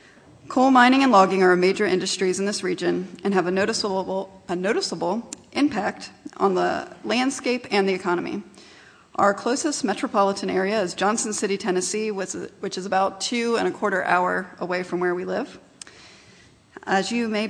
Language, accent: English, American